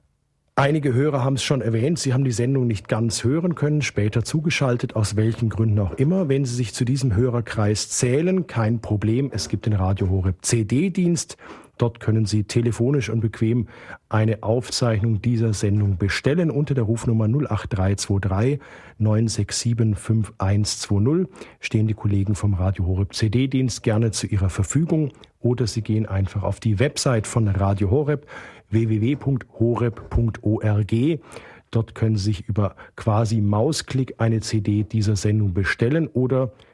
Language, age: German, 50-69